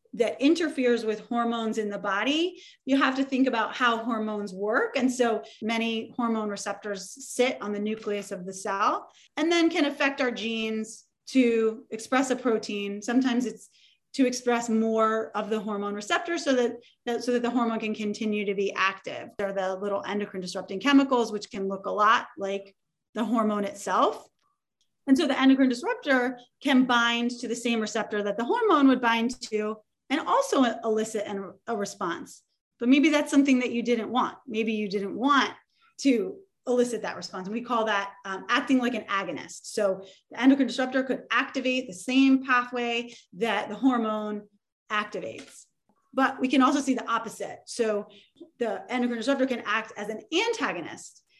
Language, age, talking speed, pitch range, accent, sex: English, 30-49, 175 wpm, 210-260 Hz, American, female